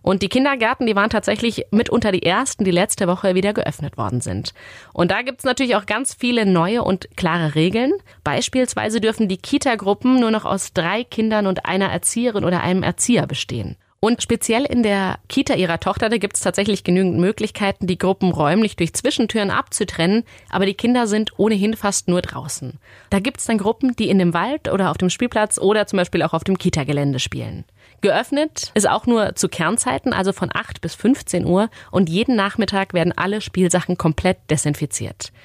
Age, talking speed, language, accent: 30-49, 190 wpm, German, German